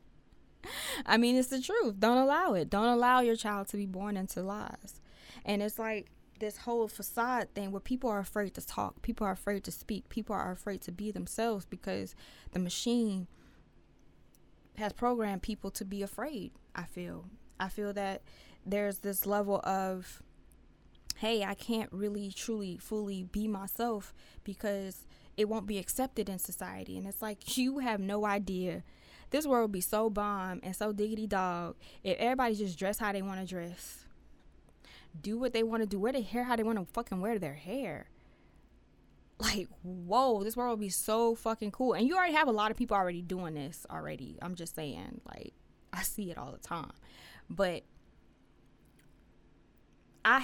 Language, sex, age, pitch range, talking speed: English, female, 20-39, 185-225 Hz, 180 wpm